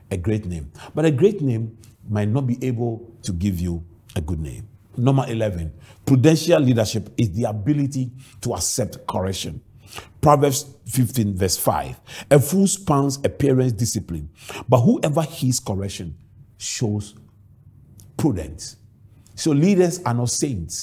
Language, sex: English, male